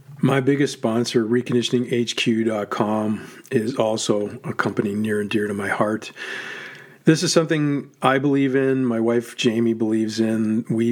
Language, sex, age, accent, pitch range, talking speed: English, male, 40-59, American, 105-125 Hz, 145 wpm